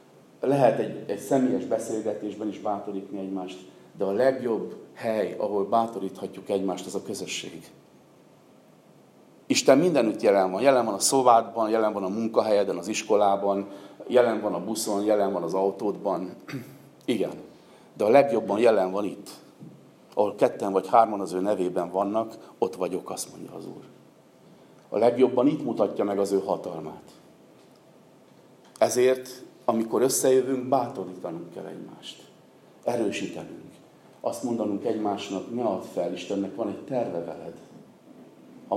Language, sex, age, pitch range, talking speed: Hungarian, male, 50-69, 100-120 Hz, 135 wpm